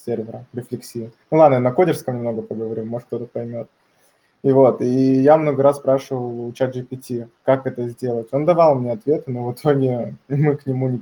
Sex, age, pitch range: male, 20-39, 120-140 Hz